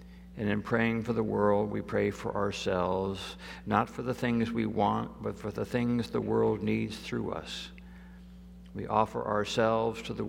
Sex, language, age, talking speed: male, English, 60-79, 175 wpm